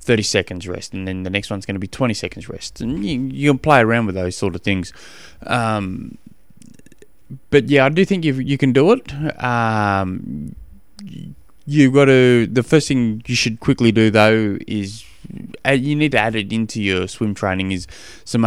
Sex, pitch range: male, 105-125 Hz